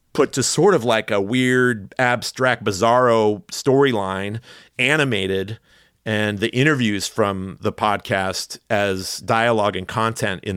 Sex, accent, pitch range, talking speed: male, American, 100-125 Hz, 125 wpm